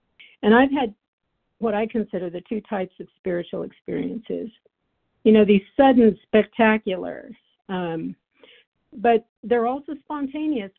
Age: 50-69